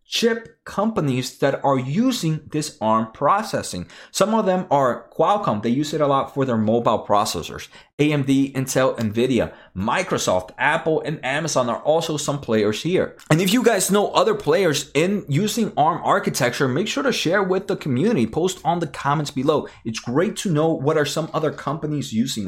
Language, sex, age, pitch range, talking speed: English, male, 30-49, 125-165 Hz, 180 wpm